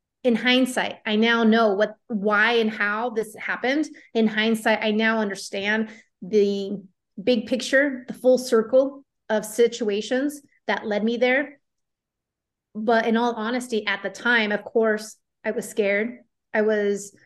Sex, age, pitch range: female, 30-49, 215-245 Hz